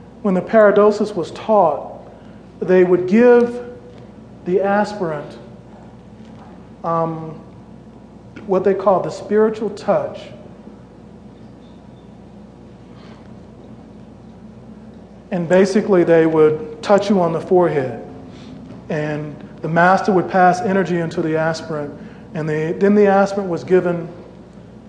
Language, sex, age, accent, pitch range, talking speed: English, male, 40-59, American, 165-200 Hz, 100 wpm